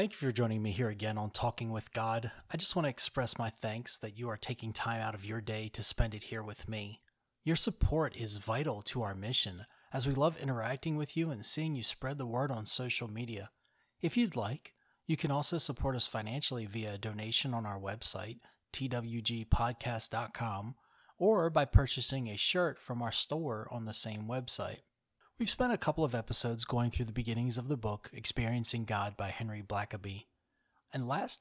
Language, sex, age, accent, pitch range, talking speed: English, male, 30-49, American, 110-150 Hz, 195 wpm